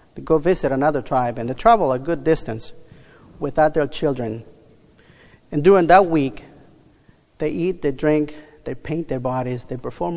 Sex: male